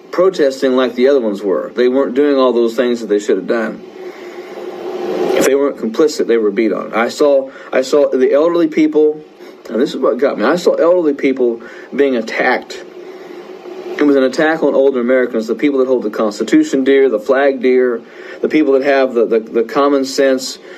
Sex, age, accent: male, 40-59, American